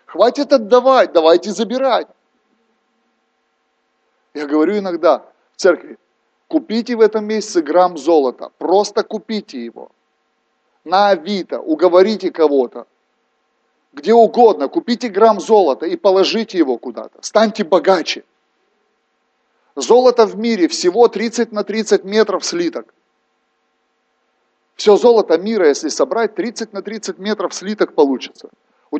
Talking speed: 110 wpm